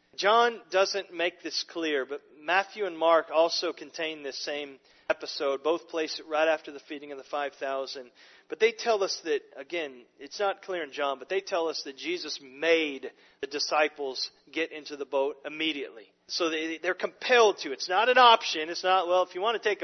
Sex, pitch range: male, 165-245 Hz